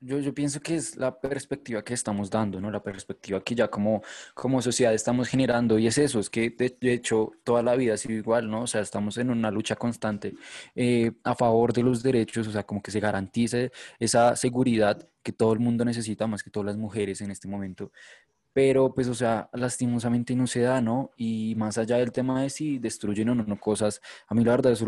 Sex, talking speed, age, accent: male, 225 wpm, 20-39, Colombian